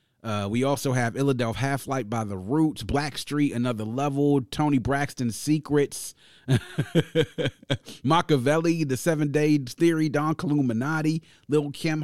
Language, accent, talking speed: English, American, 120 wpm